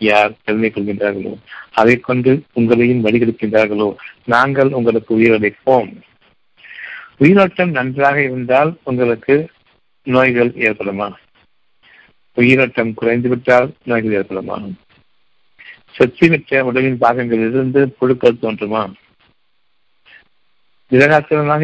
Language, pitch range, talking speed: Tamil, 115-130 Hz, 70 wpm